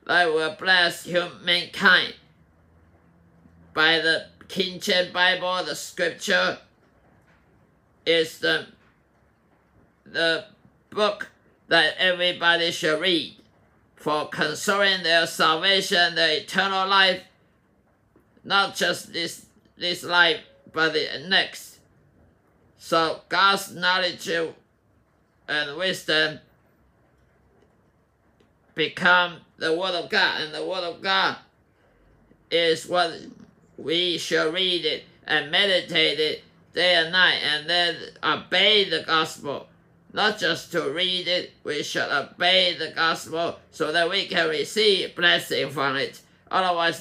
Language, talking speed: English, 110 wpm